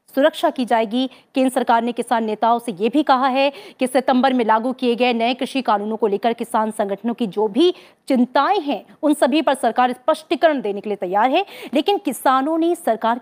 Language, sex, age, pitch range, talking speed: Hindi, female, 30-49, 230-300 Hz, 205 wpm